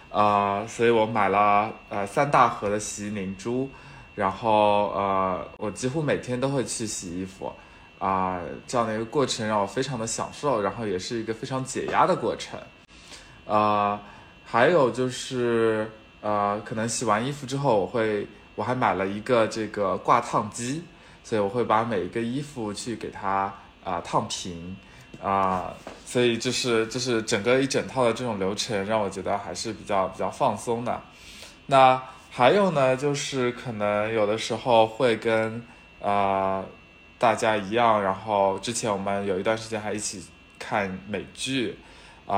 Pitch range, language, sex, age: 95-115 Hz, Chinese, male, 20-39